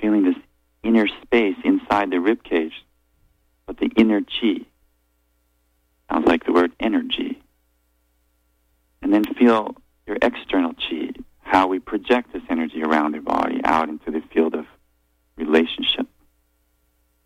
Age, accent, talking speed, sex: 40-59, American, 125 wpm, male